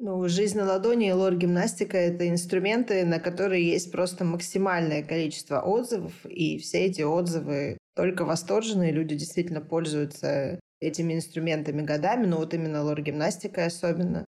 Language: Russian